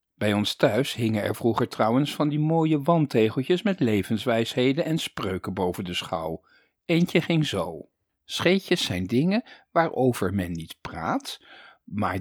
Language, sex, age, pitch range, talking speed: Dutch, male, 50-69, 105-170 Hz, 145 wpm